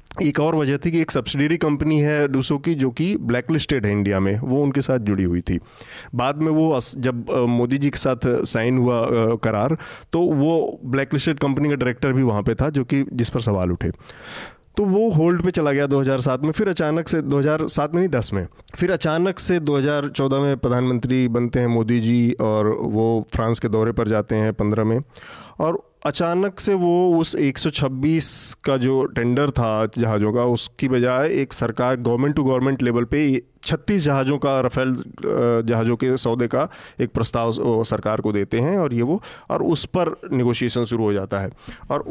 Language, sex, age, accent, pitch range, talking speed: Hindi, male, 30-49, native, 115-150 Hz, 195 wpm